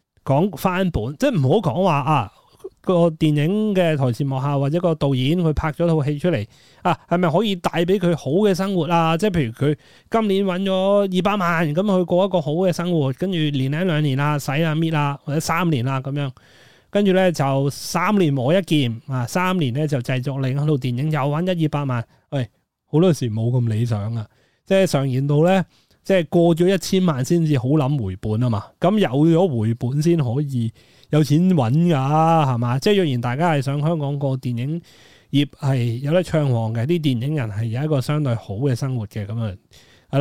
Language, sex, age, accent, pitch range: Chinese, male, 30-49, native, 125-170 Hz